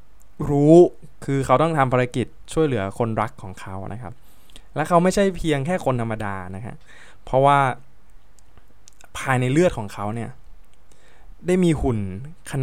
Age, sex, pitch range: 20-39, male, 100-130 Hz